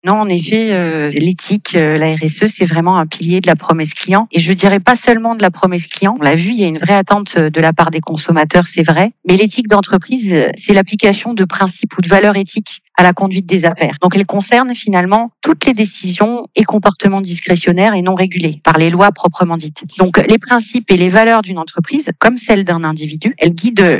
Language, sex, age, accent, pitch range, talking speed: French, female, 40-59, French, 175-215 Hz, 220 wpm